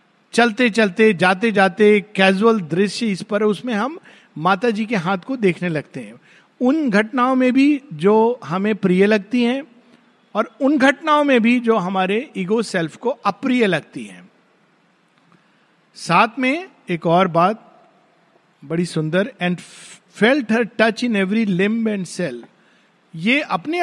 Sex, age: male, 50-69